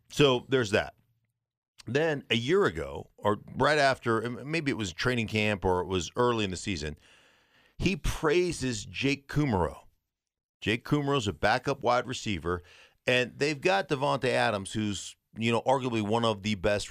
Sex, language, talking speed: male, English, 160 wpm